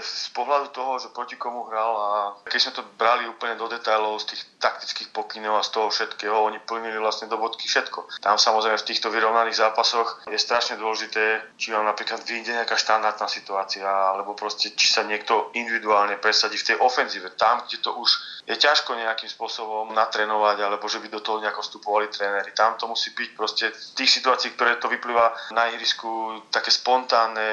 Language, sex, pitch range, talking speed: Slovak, male, 105-115 Hz, 190 wpm